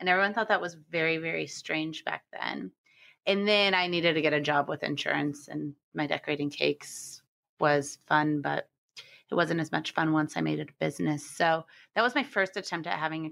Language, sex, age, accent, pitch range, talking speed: English, female, 30-49, American, 150-175 Hz, 210 wpm